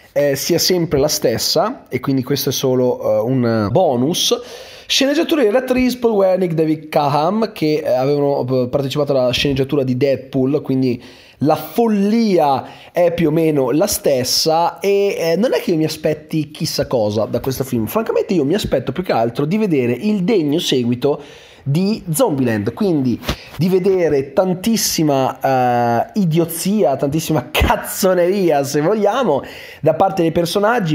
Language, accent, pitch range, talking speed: Italian, native, 140-200 Hz, 150 wpm